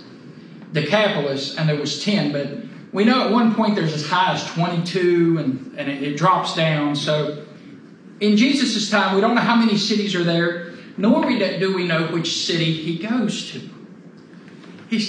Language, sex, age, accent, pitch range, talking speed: English, male, 40-59, American, 165-220 Hz, 175 wpm